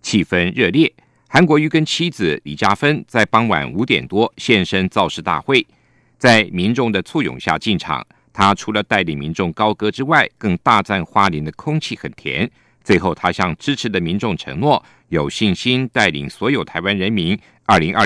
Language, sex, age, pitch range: Chinese, male, 50-69, 95-150 Hz